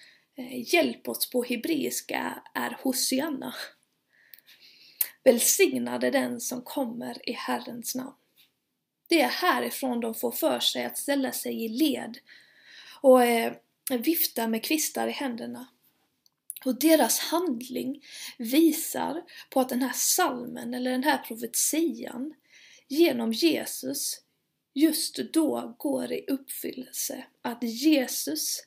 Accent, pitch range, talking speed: native, 245-290 Hz, 110 wpm